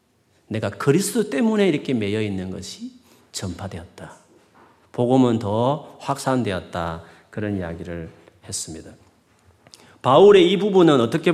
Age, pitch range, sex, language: 40-59, 100-140 Hz, male, Korean